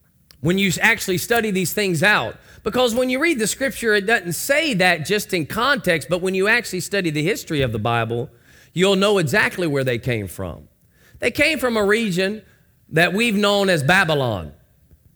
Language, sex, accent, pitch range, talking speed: English, male, American, 135-205 Hz, 185 wpm